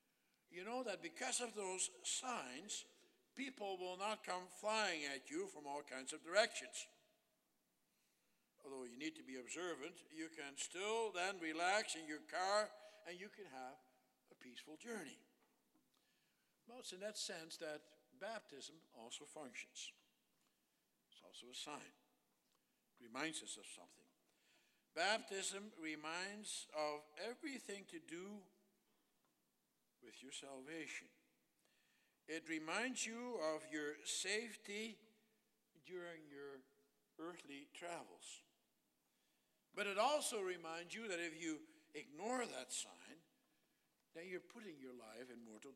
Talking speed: 125 wpm